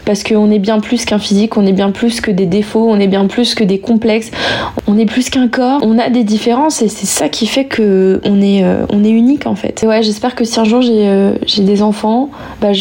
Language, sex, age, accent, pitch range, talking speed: French, female, 20-39, French, 200-225 Hz, 255 wpm